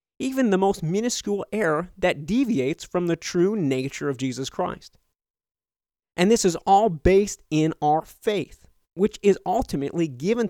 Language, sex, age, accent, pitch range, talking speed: English, male, 30-49, American, 150-195 Hz, 150 wpm